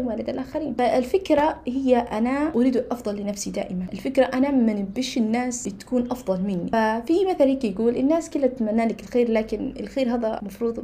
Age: 20-39